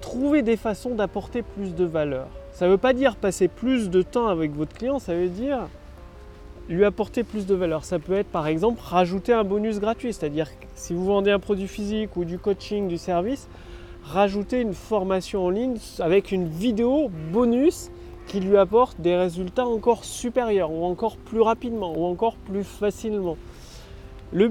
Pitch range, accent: 165-230 Hz, French